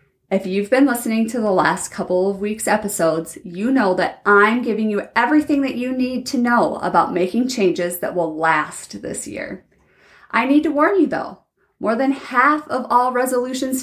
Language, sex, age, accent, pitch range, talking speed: English, female, 30-49, American, 180-250 Hz, 185 wpm